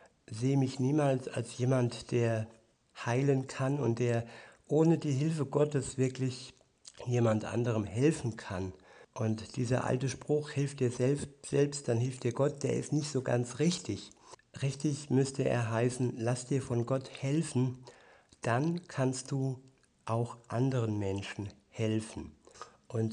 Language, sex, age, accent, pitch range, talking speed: German, male, 60-79, German, 115-135 Hz, 140 wpm